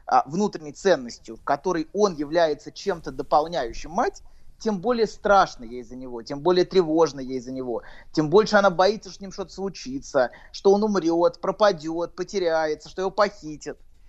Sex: male